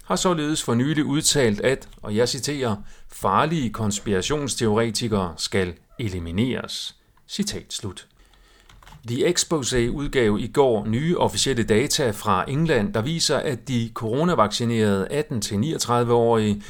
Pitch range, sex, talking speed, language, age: 105-140 Hz, male, 110 wpm, Danish, 40-59